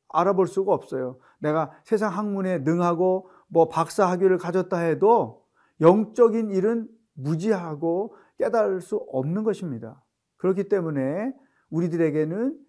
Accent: native